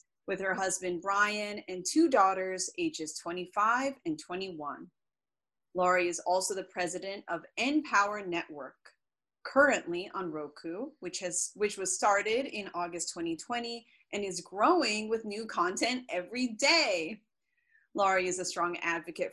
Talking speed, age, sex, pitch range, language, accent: 130 wpm, 30-49, female, 170-230 Hz, English, American